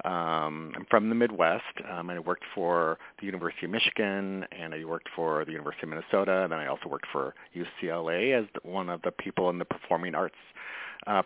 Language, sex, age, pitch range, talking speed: English, male, 40-59, 85-115 Hz, 210 wpm